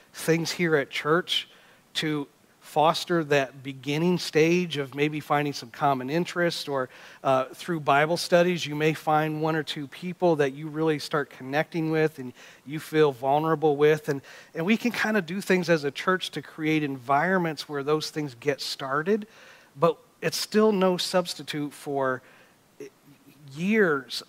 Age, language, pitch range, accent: 40-59, English, 140-175 Hz, American